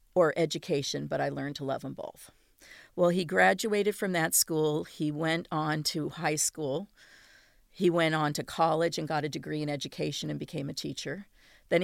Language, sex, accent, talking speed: English, female, American, 190 wpm